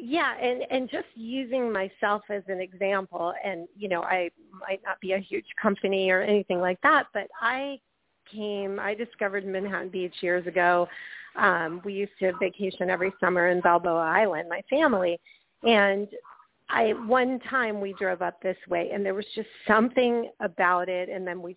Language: English